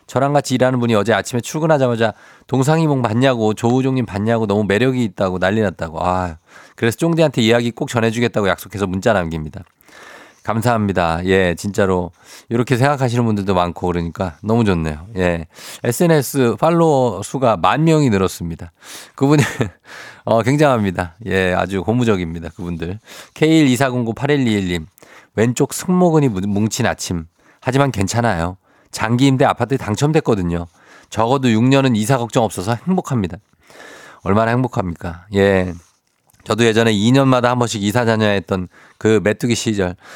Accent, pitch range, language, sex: native, 95-130 Hz, Korean, male